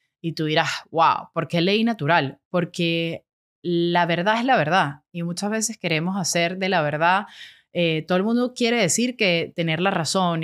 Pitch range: 165-215 Hz